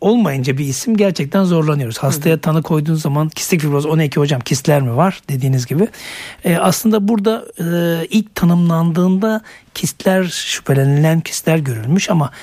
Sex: male